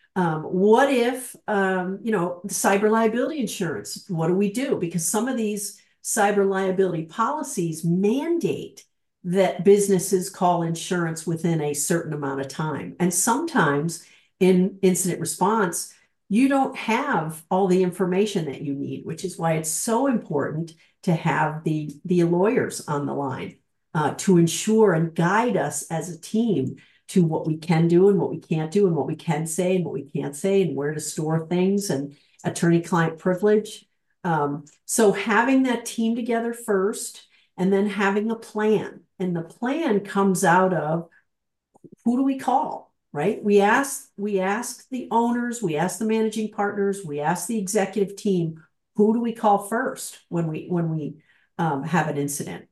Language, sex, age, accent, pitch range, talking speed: English, female, 50-69, American, 165-215 Hz, 170 wpm